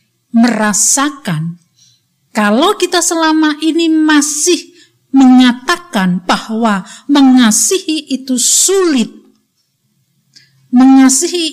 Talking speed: 60 wpm